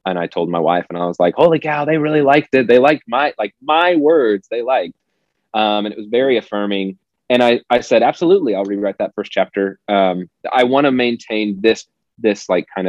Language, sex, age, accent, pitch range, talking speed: English, male, 30-49, American, 95-125 Hz, 225 wpm